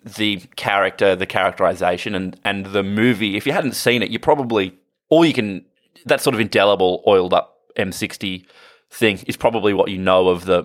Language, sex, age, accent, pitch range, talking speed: English, male, 20-39, Australian, 95-160 Hz, 185 wpm